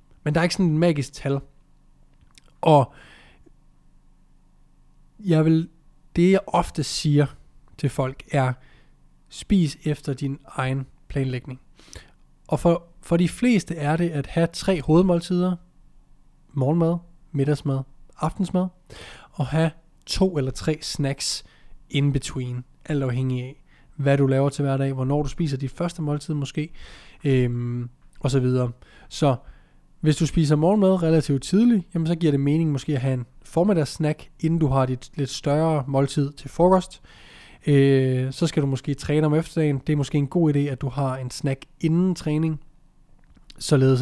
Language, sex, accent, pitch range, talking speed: Danish, male, native, 130-160 Hz, 150 wpm